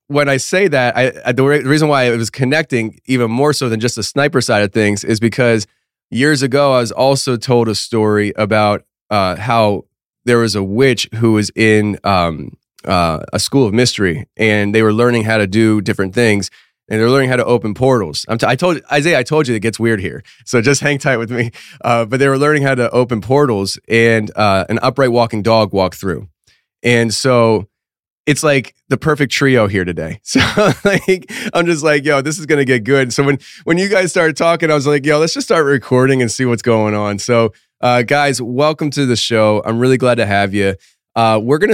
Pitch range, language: 110-135 Hz, English